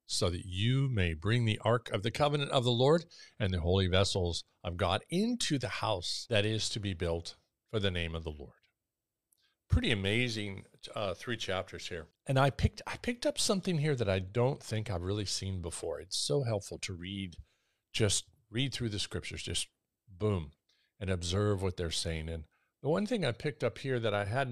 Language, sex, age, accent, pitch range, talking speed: English, male, 50-69, American, 90-115 Hz, 205 wpm